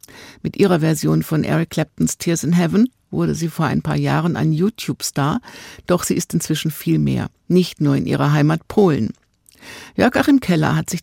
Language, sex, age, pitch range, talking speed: German, female, 50-69, 145-180 Hz, 185 wpm